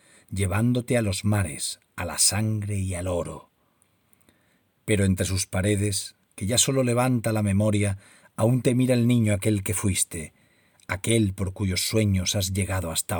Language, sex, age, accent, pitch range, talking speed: Spanish, male, 40-59, Spanish, 95-120 Hz, 160 wpm